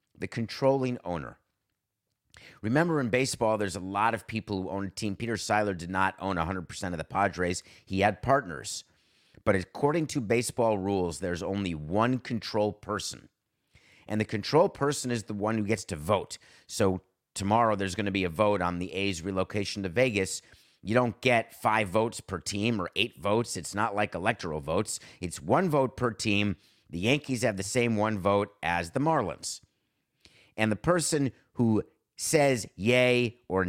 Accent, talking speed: American, 175 wpm